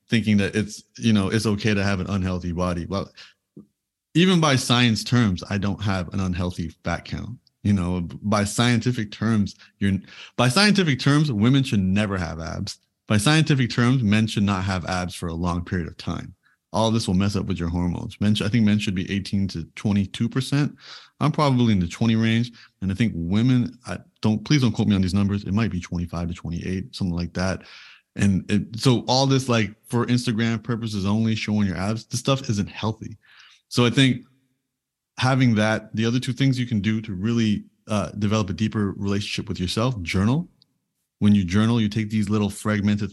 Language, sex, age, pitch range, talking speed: English, male, 30-49, 100-120 Hz, 200 wpm